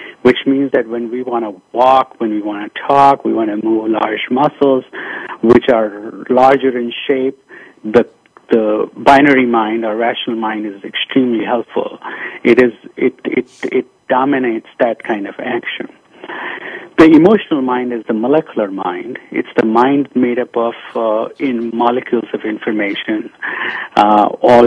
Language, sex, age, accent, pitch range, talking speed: English, male, 50-69, Indian, 110-135 Hz, 155 wpm